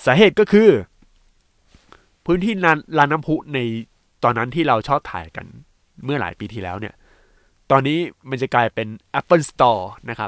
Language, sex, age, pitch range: Thai, male, 20-39, 110-150 Hz